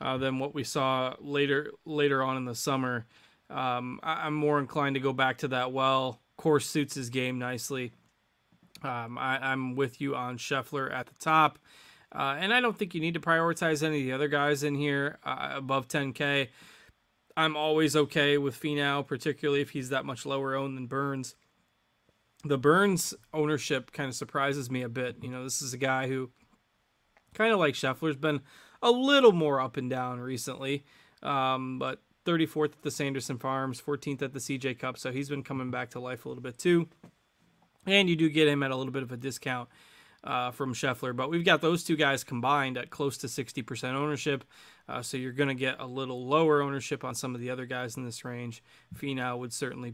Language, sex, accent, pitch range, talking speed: English, male, American, 130-150 Hz, 205 wpm